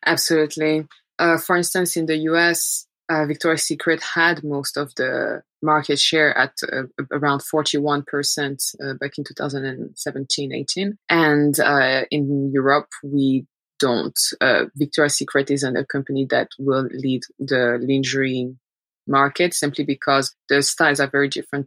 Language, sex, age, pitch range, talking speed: English, female, 20-39, 140-150 Hz, 135 wpm